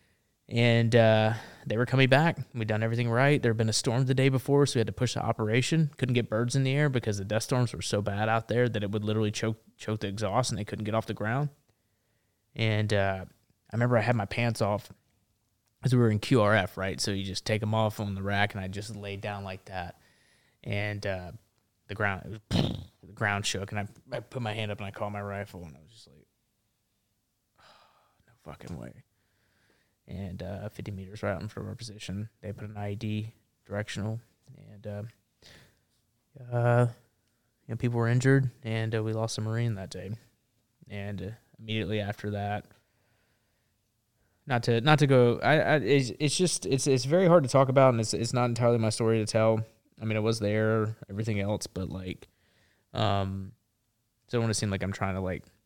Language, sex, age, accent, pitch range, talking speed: English, male, 20-39, American, 100-120 Hz, 215 wpm